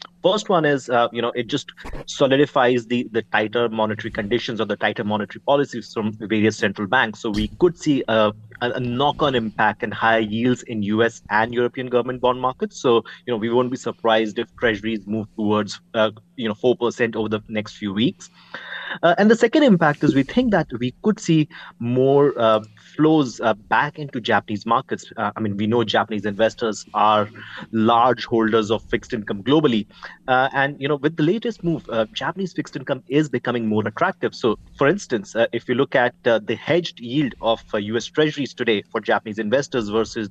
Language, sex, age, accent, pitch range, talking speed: English, male, 30-49, Indian, 110-145 Hz, 200 wpm